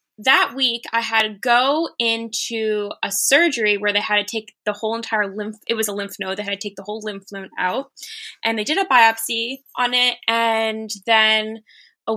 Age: 10-29